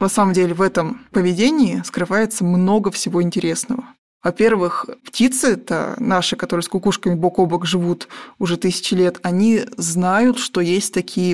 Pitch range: 180-230 Hz